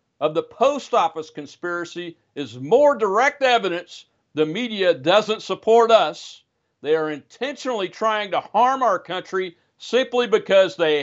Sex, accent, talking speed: male, American, 135 wpm